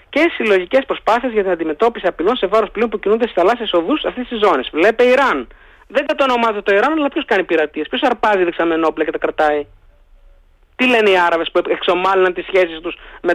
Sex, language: male, Greek